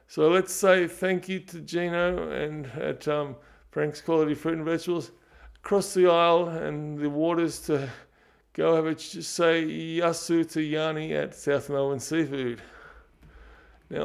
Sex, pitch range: male, 130-165 Hz